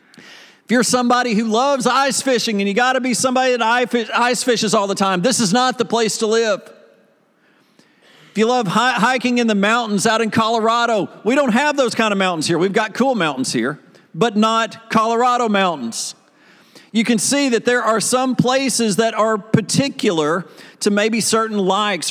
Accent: American